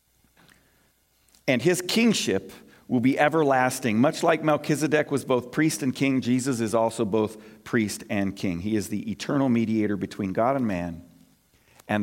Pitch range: 95-145 Hz